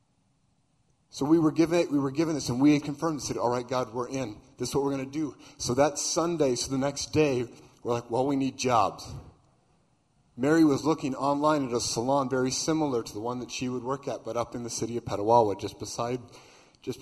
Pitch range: 120-150 Hz